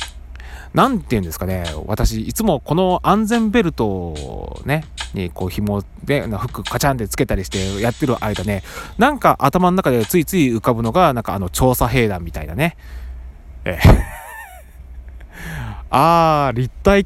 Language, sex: Japanese, male